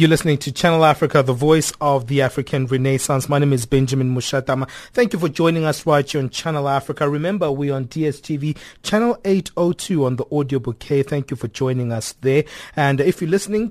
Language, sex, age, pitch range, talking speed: English, male, 30-49, 135-160 Hz, 205 wpm